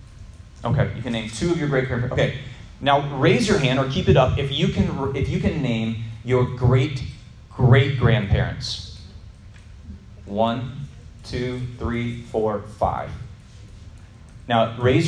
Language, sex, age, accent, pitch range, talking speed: English, male, 30-49, American, 105-135 Hz, 130 wpm